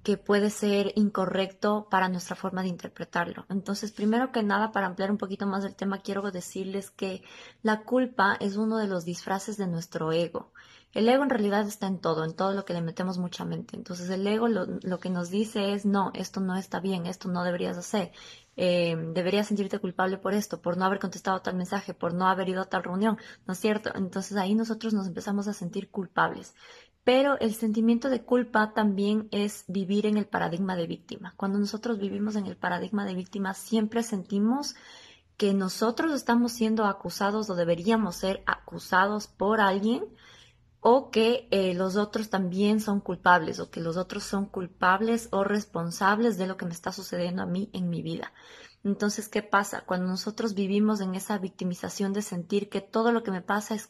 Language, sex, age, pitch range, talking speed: Spanish, female, 20-39, 185-215 Hz, 195 wpm